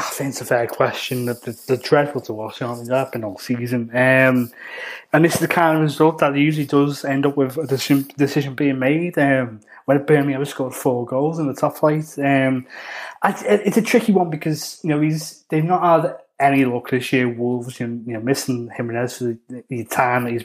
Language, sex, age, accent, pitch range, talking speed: English, male, 20-39, British, 130-155 Hz, 225 wpm